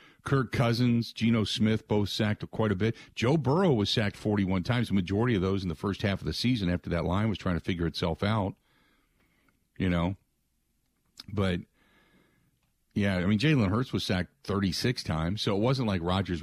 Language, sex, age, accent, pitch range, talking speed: English, male, 50-69, American, 100-130 Hz, 190 wpm